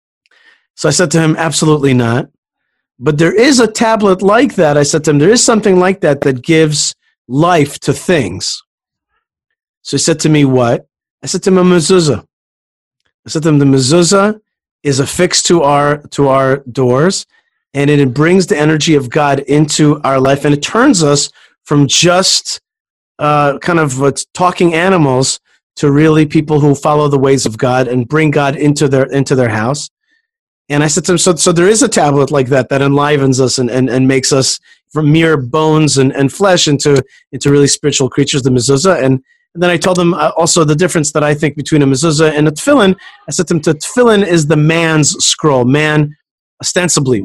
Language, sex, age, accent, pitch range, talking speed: English, male, 40-59, American, 140-180 Hz, 200 wpm